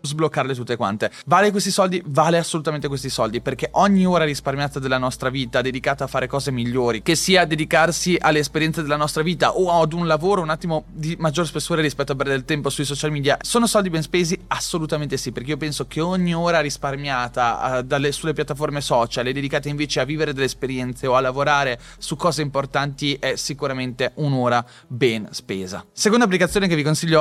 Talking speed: 195 wpm